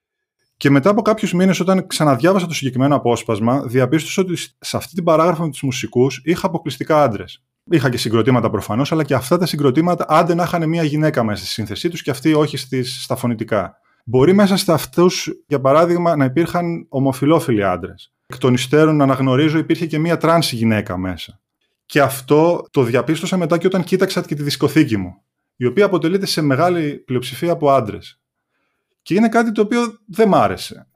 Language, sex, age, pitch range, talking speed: Greek, male, 20-39, 130-180 Hz, 180 wpm